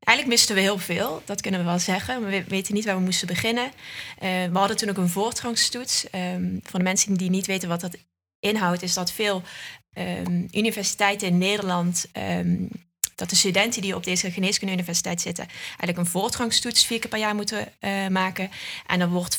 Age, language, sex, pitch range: 20-39, Dutch, female, 180-210 Hz